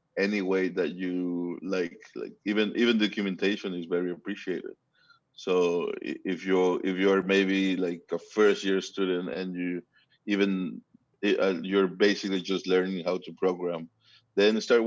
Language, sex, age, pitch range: English, male, 20-39, 90-110 Hz